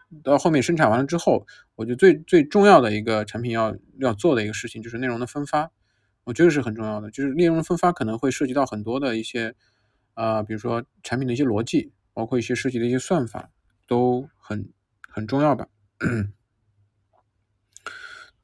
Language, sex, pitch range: Chinese, male, 110-130 Hz